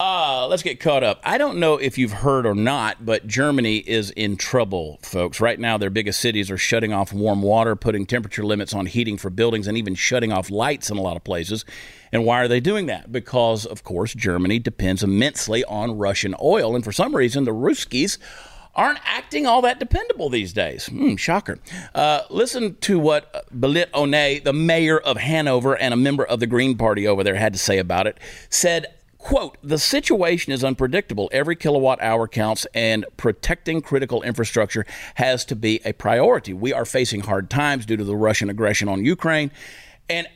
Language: English